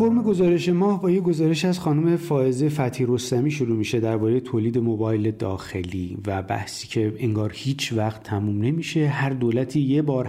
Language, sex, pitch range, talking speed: Persian, male, 120-160 Hz, 165 wpm